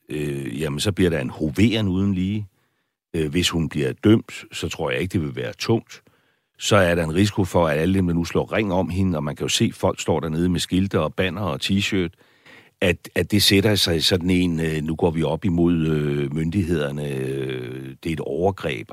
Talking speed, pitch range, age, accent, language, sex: 225 wpm, 80-100 Hz, 60-79, native, Danish, male